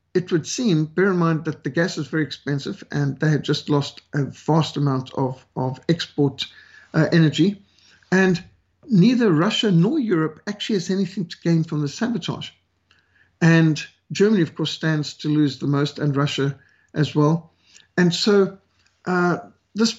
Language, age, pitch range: English, 60-79, 145-180 Hz